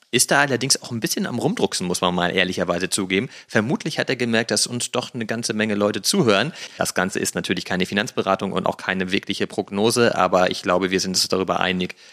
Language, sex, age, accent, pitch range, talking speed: German, male, 30-49, German, 105-135 Hz, 220 wpm